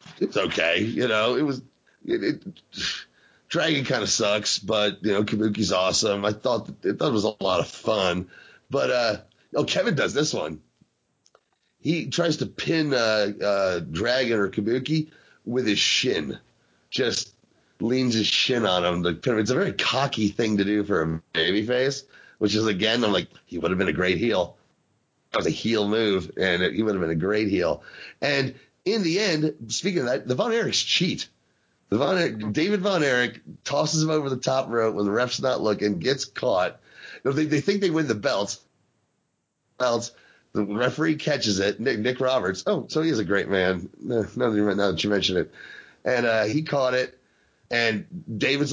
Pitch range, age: 105-150 Hz, 30-49